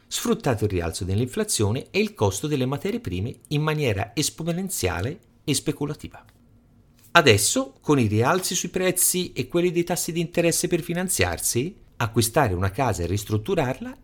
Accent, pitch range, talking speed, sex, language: native, 100-165 Hz, 145 wpm, male, Italian